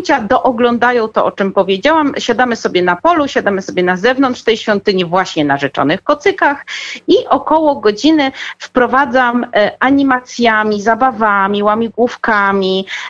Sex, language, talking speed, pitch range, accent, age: female, Polish, 120 wpm, 200-270 Hz, native, 40-59